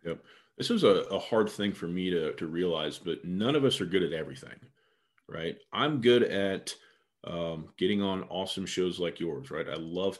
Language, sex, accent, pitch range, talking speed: English, male, American, 85-95 Hz, 200 wpm